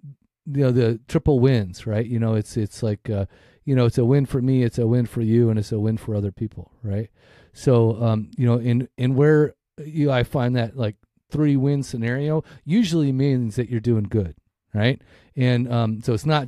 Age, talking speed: 40-59, 215 wpm